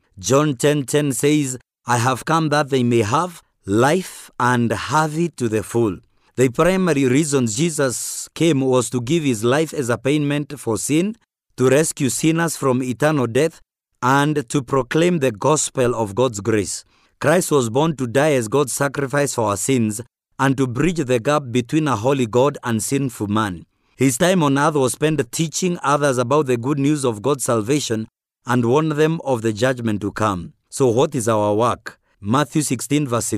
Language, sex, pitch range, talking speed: English, male, 120-150 Hz, 180 wpm